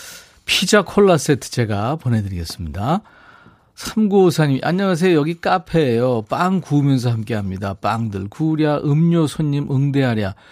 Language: Korean